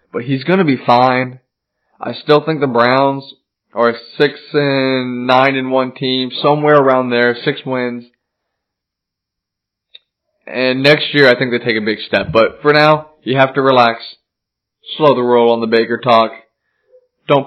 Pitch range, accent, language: 115-150 Hz, American, English